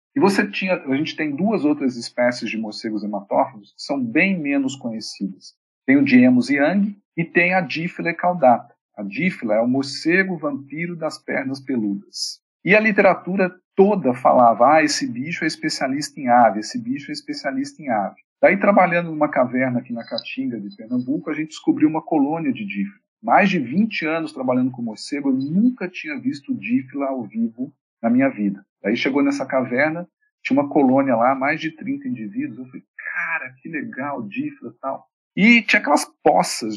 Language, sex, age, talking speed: Portuguese, male, 50-69, 180 wpm